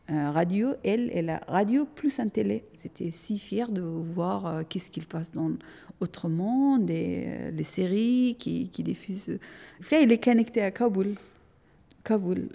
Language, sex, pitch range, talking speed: French, female, 170-220 Hz, 165 wpm